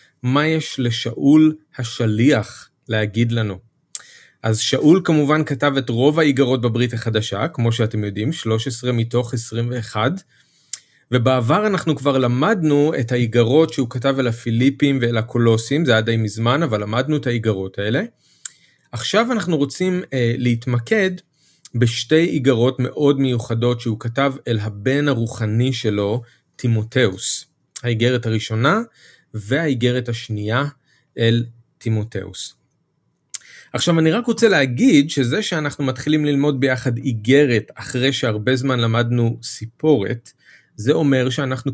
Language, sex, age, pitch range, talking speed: Hebrew, male, 30-49, 115-150 Hz, 120 wpm